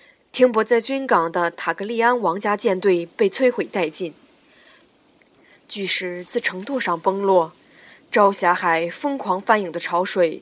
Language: Chinese